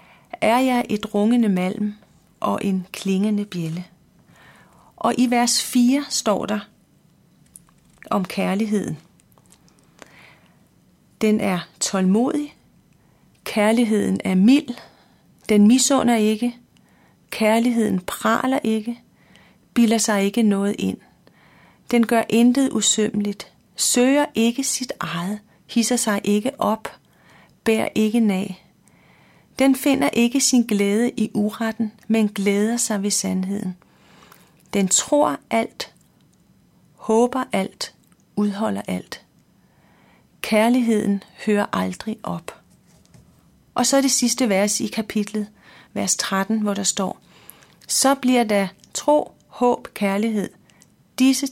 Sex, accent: female, native